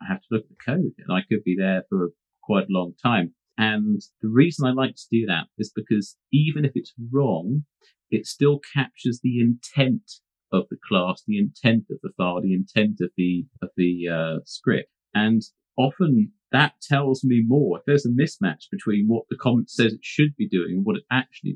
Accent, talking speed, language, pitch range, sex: British, 210 wpm, English, 90-135 Hz, male